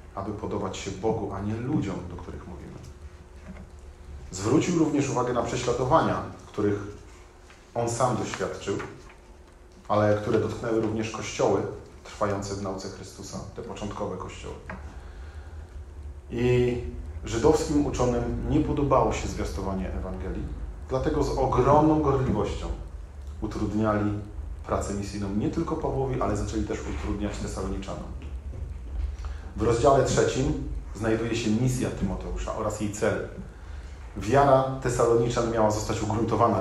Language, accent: Polish, native